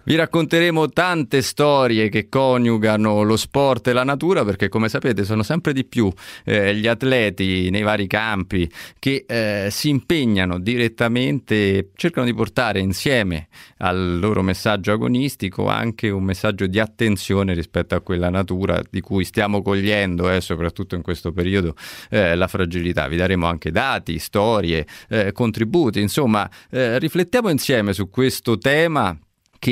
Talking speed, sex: 145 wpm, male